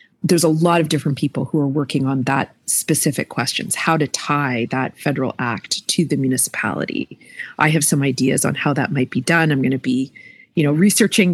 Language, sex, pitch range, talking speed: English, female, 135-160 Hz, 205 wpm